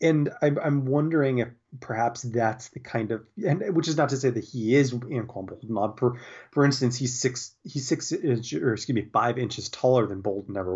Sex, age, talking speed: male, 30-49, 200 wpm